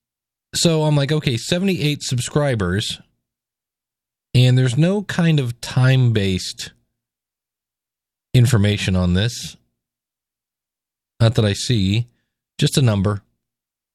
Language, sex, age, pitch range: English, male, 40-59, 95-130 Hz